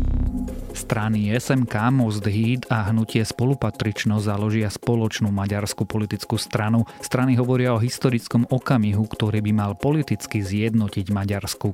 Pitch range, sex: 105-125 Hz, male